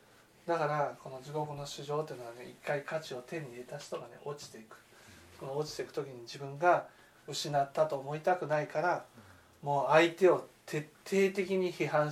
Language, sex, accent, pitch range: Japanese, male, native, 130-160 Hz